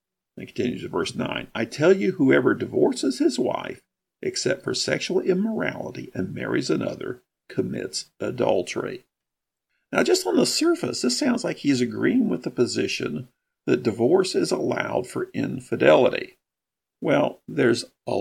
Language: English